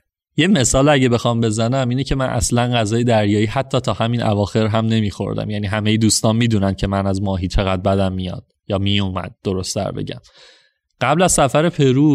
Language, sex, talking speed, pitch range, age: Persian, male, 185 wpm, 105-130 Hz, 20-39